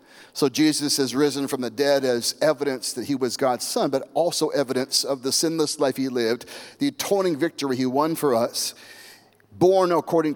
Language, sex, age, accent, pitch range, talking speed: English, male, 40-59, American, 130-160 Hz, 185 wpm